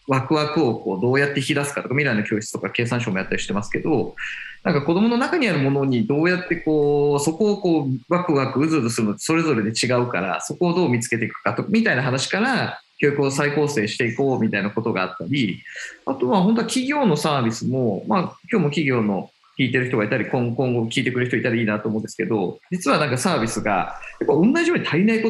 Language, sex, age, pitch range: Japanese, male, 20-39, 115-170 Hz